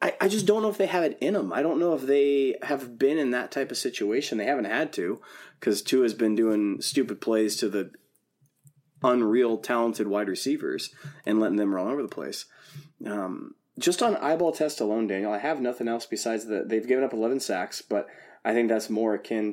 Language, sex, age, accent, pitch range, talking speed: English, male, 20-39, American, 110-145 Hz, 215 wpm